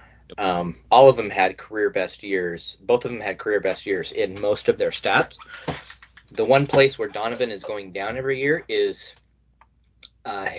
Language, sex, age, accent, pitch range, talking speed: English, male, 20-39, American, 95-155 Hz, 180 wpm